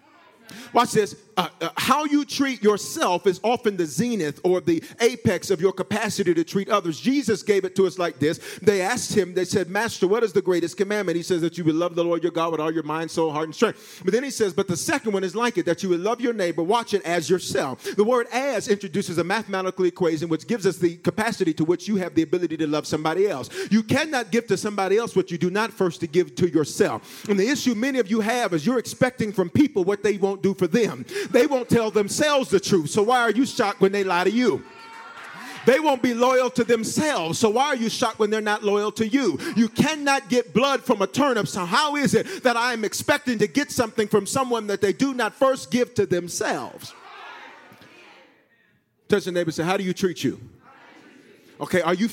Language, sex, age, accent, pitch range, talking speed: English, male, 40-59, American, 180-240 Hz, 235 wpm